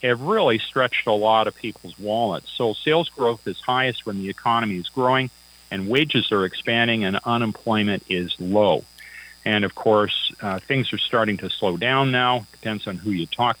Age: 40-59